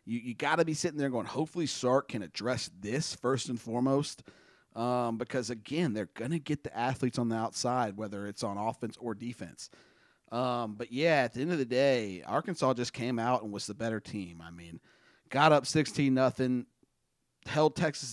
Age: 30-49